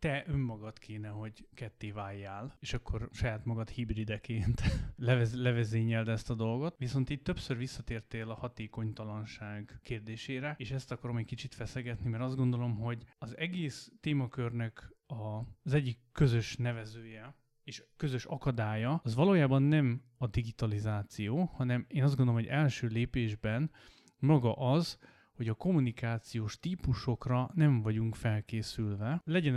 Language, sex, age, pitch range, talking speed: Hungarian, male, 30-49, 110-135 Hz, 130 wpm